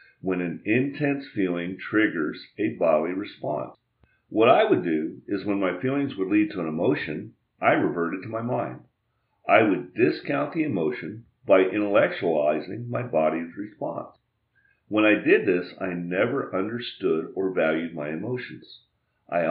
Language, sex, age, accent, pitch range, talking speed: English, male, 50-69, American, 85-120 Hz, 150 wpm